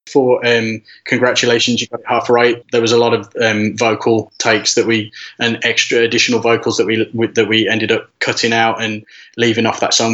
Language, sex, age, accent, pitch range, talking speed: English, male, 20-39, British, 115-125 Hz, 205 wpm